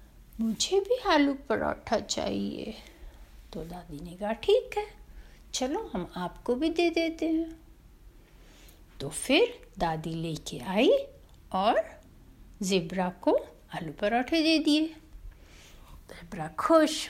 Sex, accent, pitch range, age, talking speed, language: female, native, 190-315 Hz, 60-79, 115 wpm, Hindi